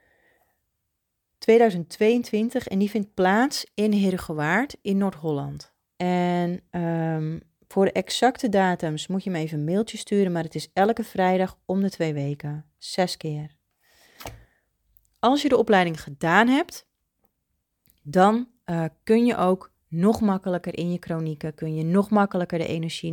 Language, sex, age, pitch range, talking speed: Dutch, female, 30-49, 160-200 Hz, 145 wpm